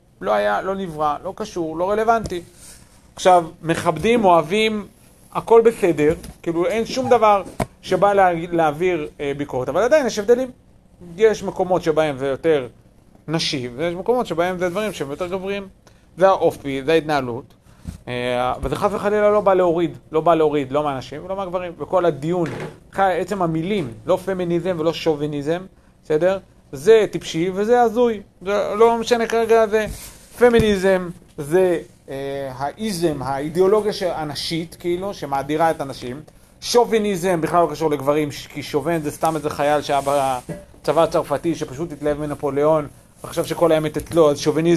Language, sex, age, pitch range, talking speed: Hebrew, male, 40-59, 150-195 Hz, 140 wpm